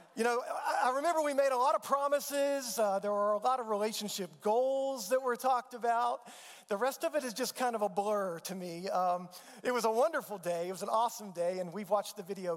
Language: English